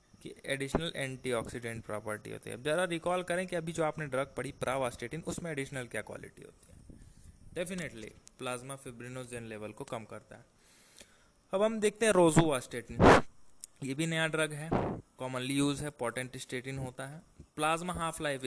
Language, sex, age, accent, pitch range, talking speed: Hindi, male, 20-39, native, 120-160 Hz, 170 wpm